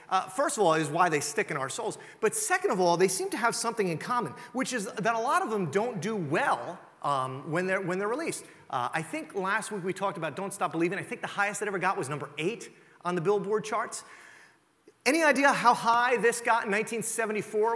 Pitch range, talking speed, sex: 195-255 Hz, 240 wpm, male